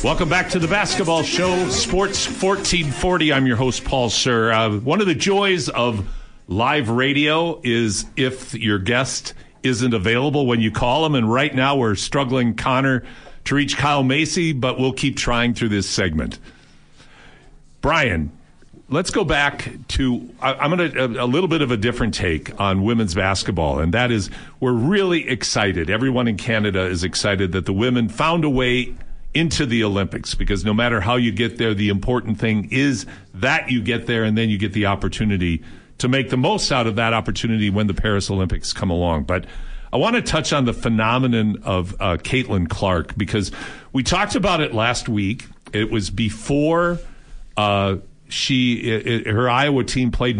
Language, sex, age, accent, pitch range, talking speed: English, male, 50-69, American, 105-135 Hz, 180 wpm